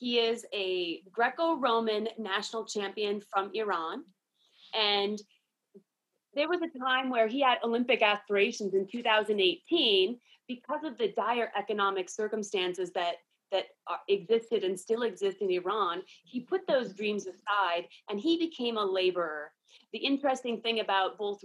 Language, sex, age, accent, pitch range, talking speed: English, female, 30-49, American, 200-260 Hz, 135 wpm